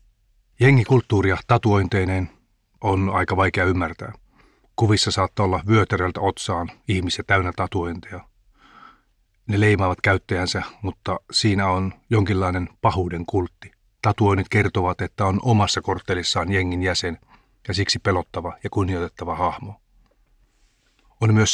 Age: 30-49